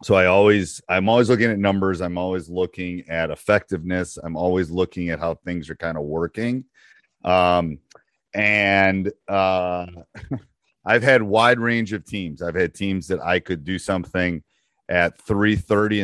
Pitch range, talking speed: 85-105 Hz, 155 wpm